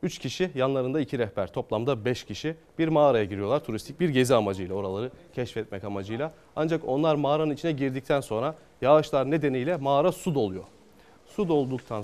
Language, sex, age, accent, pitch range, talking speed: Turkish, male, 30-49, native, 115-155 Hz, 155 wpm